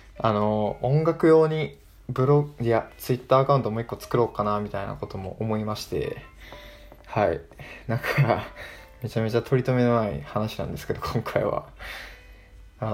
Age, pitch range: 20-39, 100-135 Hz